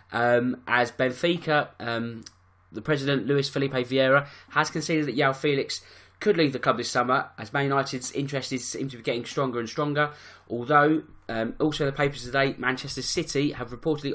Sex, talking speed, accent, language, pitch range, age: male, 170 wpm, British, English, 120-145 Hz, 20-39